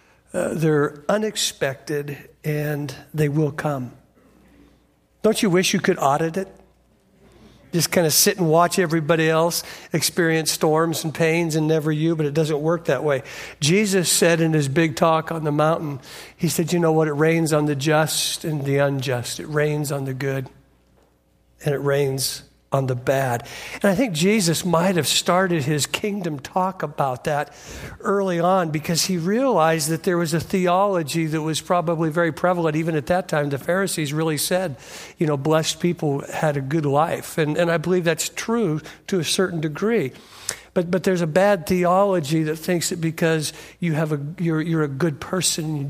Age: 50-69